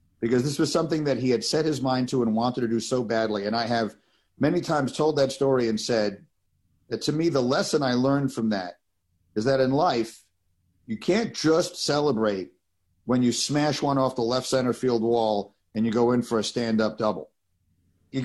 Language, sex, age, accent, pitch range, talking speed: English, male, 50-69, American, 105-140 Hz, 205 wpm